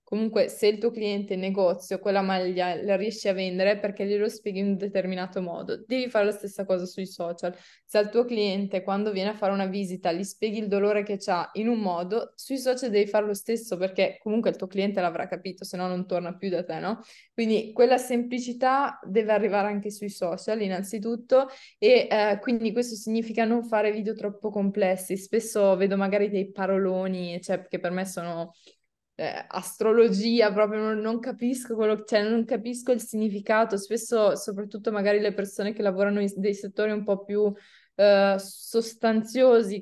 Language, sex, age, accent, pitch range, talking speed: Italian, female, 20-39, native, 195-225 Hz, 185 wpm